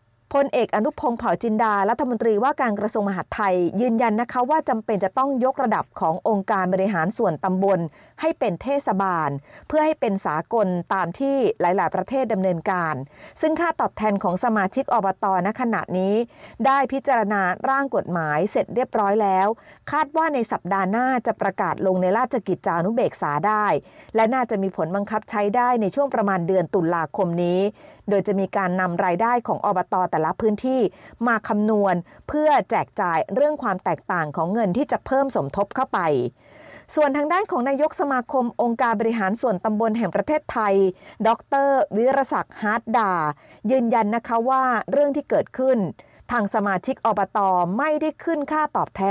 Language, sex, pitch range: Thai, female, 190-260 Hz